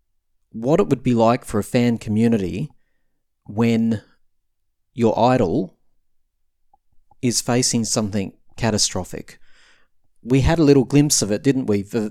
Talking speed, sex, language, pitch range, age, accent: 130 wpm, male, English, 105-130 Hz, 30-49, Australian